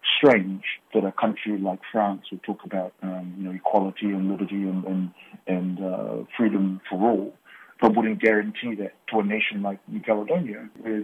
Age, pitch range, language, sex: 30-49, 95-110 Hz, English, male